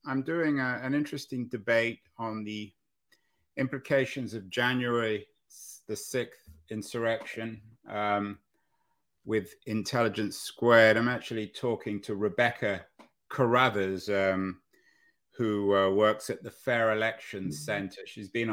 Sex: male